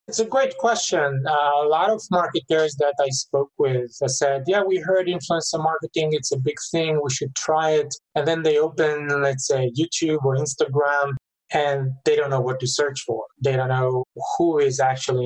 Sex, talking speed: male, 195 wpm